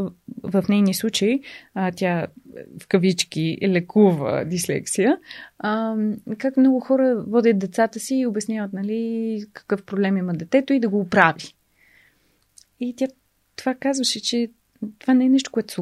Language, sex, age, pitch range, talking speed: Bulgarian, female, 20-39, 200-265 Hz, 140 wpm